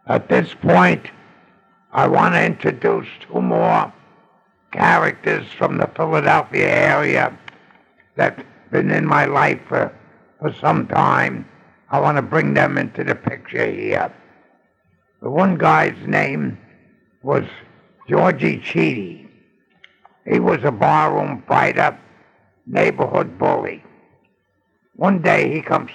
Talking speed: 120 wpm